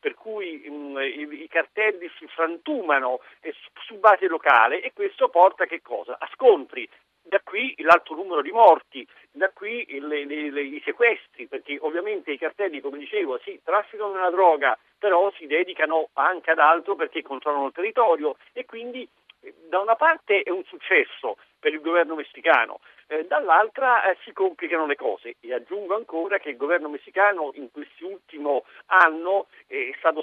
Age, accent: 50-69, native